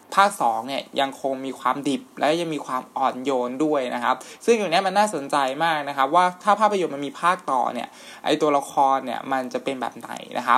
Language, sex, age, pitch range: Thai, male, 20-39, 135-165 Hz